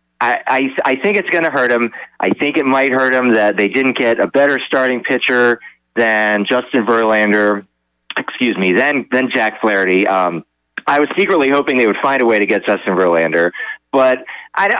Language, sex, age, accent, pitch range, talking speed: English, male, 40-59, American, 100-130 Hz, 195 wpm